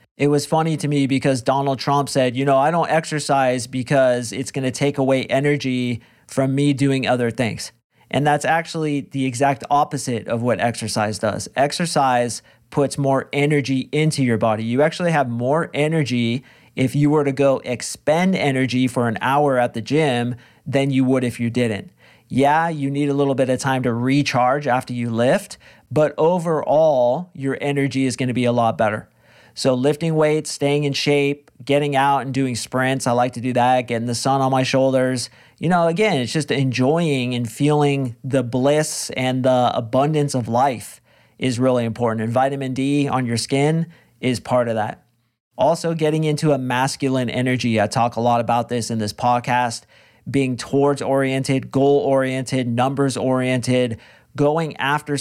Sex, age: male, 40-59